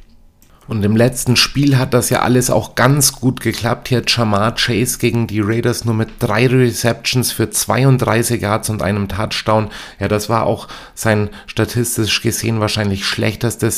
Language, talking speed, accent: German, 160 wpm, German